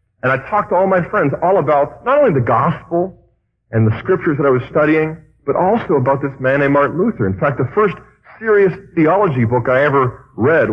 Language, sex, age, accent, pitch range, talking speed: English, male, 50-69, American, 115-155 Hz, 215 wpm